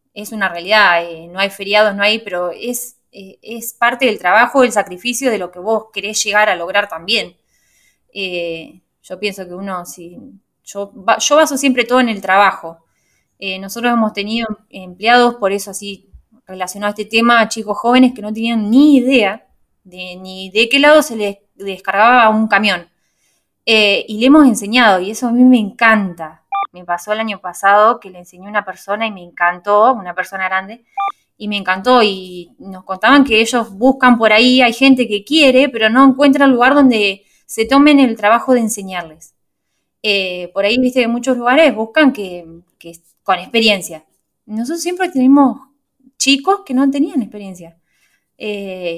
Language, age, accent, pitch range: English, 20-39, Argentinian, 190-245 Hz